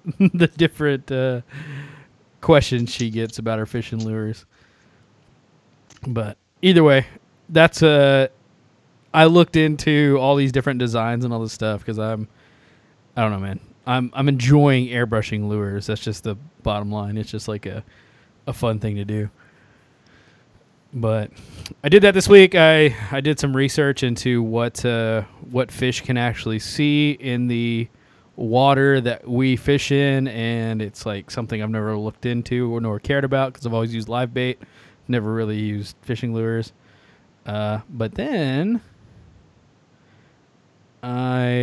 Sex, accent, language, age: male, American, English, 20-39